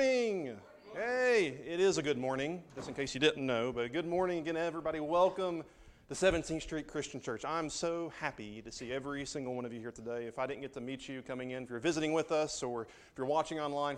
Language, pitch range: English, 110-145 Hz